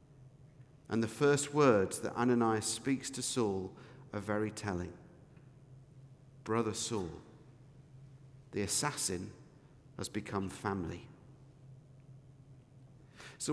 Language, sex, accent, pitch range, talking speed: English, male, British, 115-140 Hz, 90 wpm